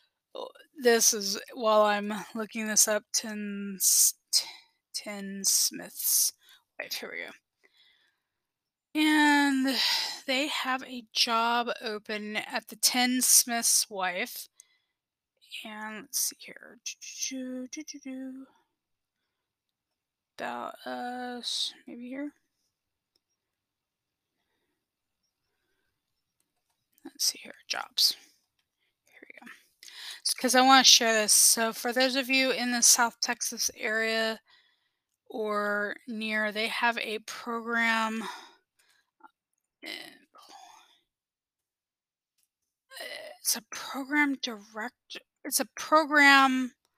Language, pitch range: English, 220-280 Hz